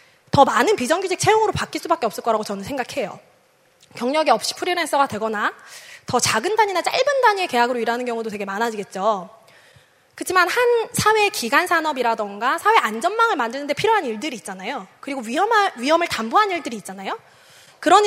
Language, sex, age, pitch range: Korean, female, 20-39, 235-350 Hz